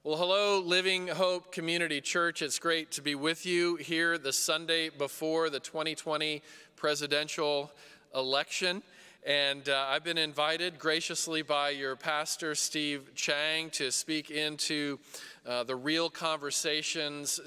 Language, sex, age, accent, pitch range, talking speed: English, male, 40-59, American, 140-160 Hz, 130 wpm